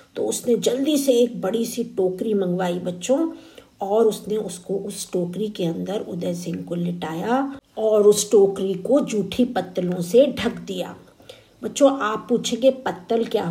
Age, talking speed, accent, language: 50-69, 155 wpm, native, Hindi